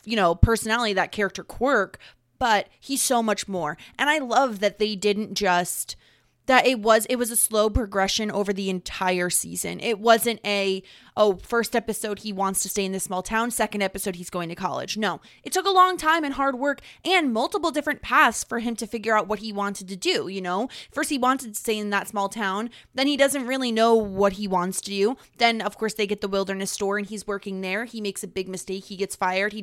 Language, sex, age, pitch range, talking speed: English, female, 20-39, 190-235 Hz, 235 wpm